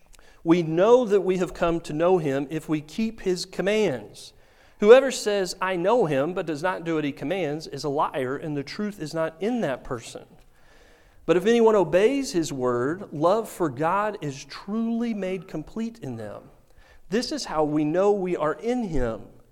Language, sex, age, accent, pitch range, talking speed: English, male, 40-59, American, 155-220 Hz, 190 wpm